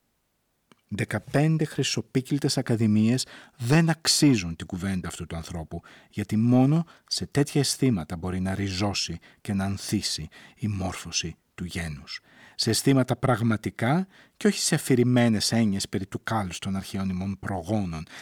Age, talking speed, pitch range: 50-69, 130 wpm, 95-130 Hz